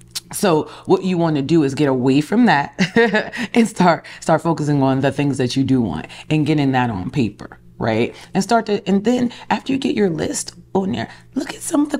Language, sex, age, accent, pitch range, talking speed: English, female, 30-49, American, 140-210 Hz, 225 wpm